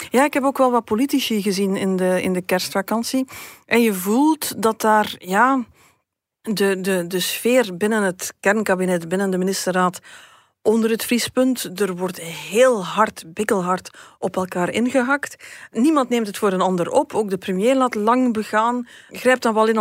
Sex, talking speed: female, 165 wpm